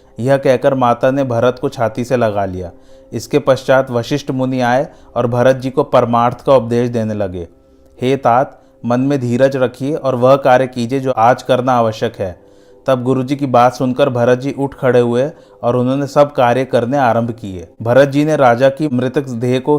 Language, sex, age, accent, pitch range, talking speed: Hindi, male, 30-49, native, 120-135 Hz, 195 wpm